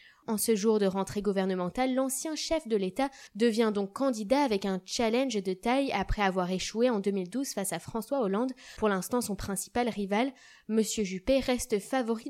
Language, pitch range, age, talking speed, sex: French, 205-255 Hz, 20-39, 175 wpm, female